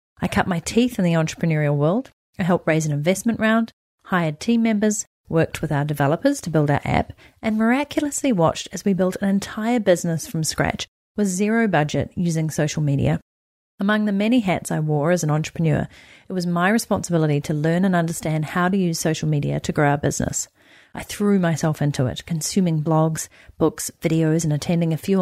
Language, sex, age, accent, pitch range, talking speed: English, female, 30-49, Australian, 150-190 Hz, 195 wpm